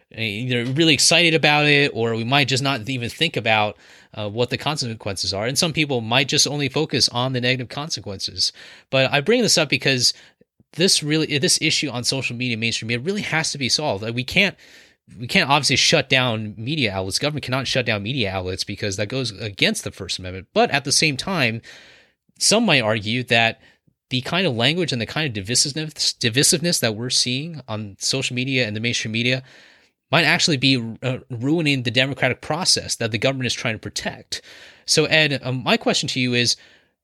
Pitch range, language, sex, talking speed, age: 115-145 Hz, English, male, 200 wpm, 30-49